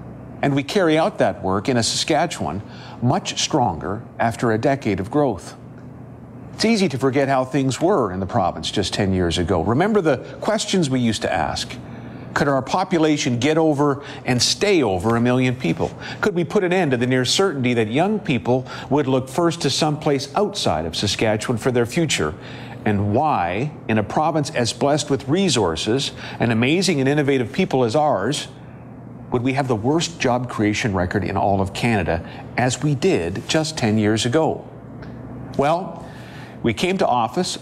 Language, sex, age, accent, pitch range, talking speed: English, male, 50-69, American, 115-155 Hz, 175 wpm